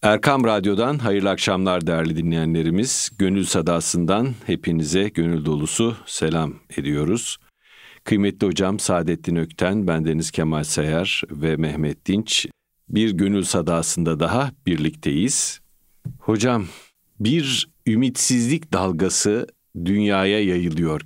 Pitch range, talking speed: 80-105 Hz, 100 wpm